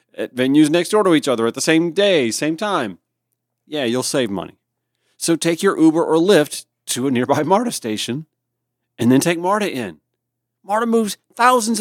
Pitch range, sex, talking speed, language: 120-160 Hz, male, 185 wpm, English